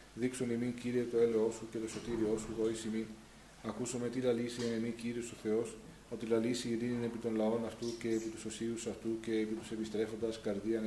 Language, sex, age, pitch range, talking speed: Greek, male, 20-39, 110-120 Hz, 210 wpm